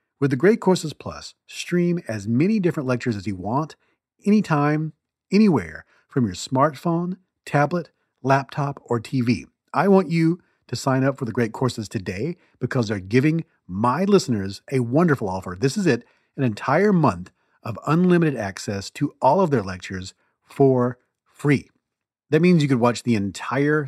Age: 40-59